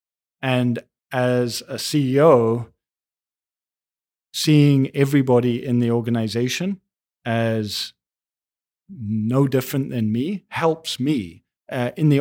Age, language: 40-59, English